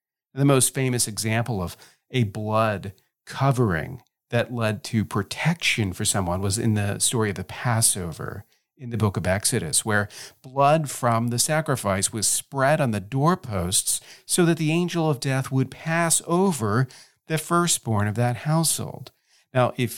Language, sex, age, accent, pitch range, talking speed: English, male, 40-59, American, 110-155 Hz, 155 wpm